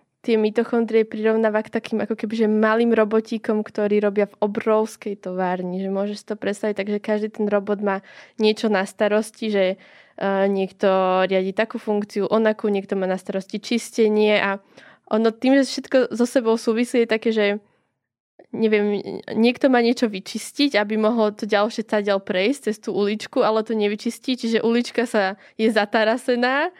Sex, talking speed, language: female, 155 wpm, Slovak